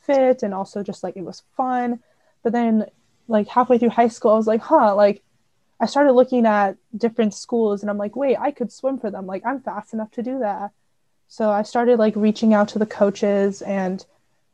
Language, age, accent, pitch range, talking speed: English, 20-39, American, 200-235 Hz, 215 wpm